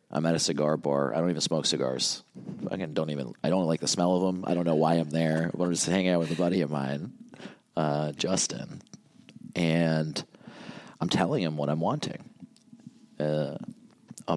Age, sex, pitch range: 30-49, male, 75-95 Hz